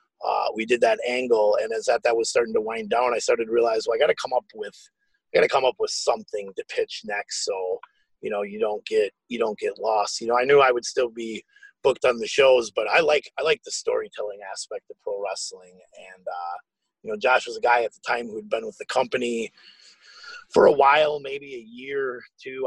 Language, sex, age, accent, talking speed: English, male, 30-49, American, 245 wpm